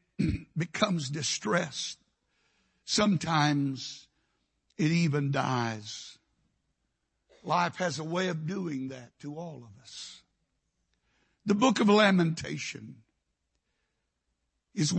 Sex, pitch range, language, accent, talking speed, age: male, 150-210 Hz, English, American, 90 wpm, 60-79